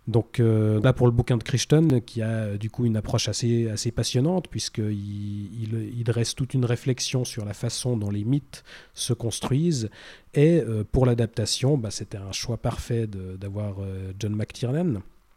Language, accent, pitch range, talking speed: French, French, 105-125 Hz, 180 wpm